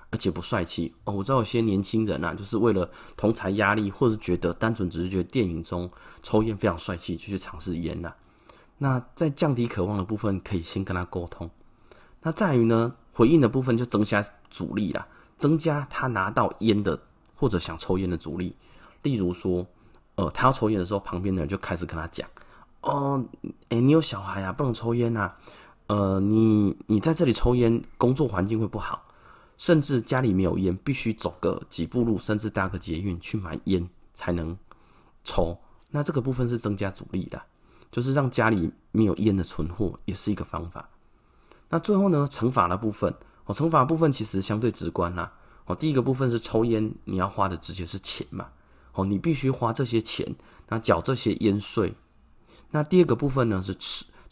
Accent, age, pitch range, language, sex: native, 20-39, 95-125 Hz, Chinese, male